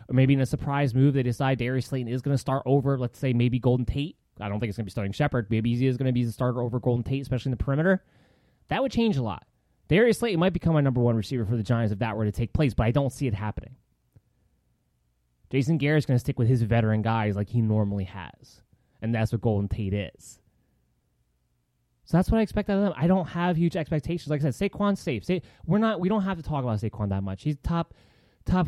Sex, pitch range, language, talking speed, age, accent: male, 115-155 Hz, English, 260 wpm, 20-39, American